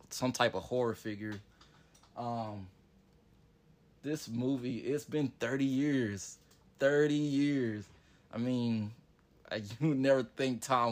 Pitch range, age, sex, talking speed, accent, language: 110-130 Hz, 20-39, male, 115 wpm, American, English